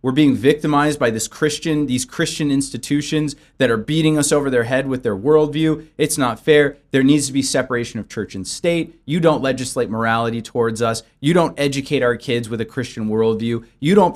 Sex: male